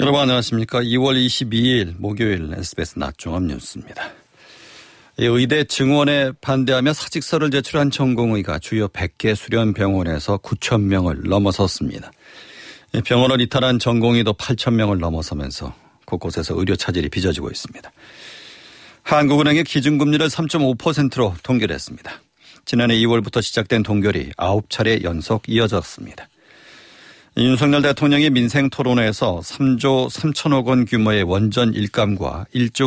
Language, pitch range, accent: Korean, 100-130 Hz, native